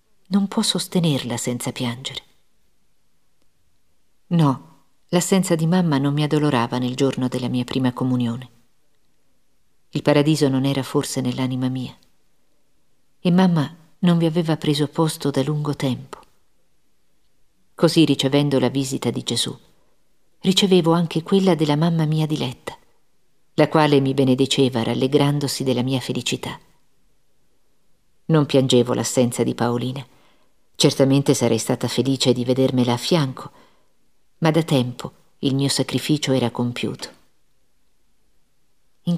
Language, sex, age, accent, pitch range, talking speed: Italian, female, 50-69, native, 125-155 Hz, 120 wpm